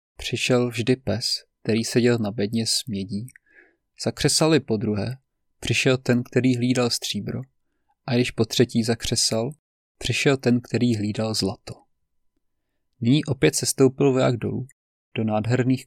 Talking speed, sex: 130 wpm, male